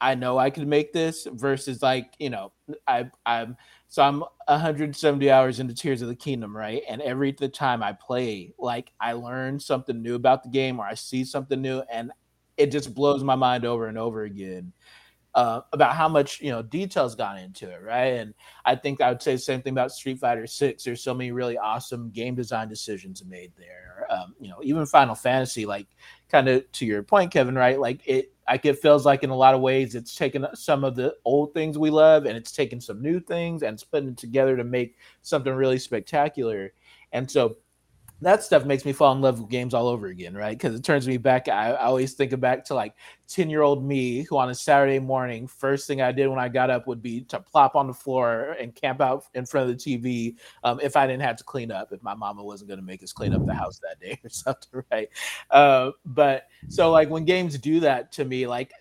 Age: 30-49